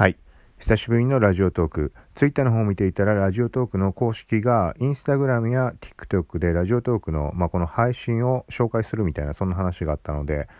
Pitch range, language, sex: 80-115 Hz, Japanese, male